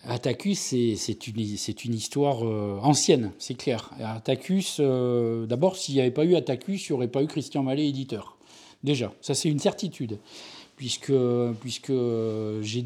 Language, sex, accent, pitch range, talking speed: French, male, French, 120-145 Hz, 170 wpm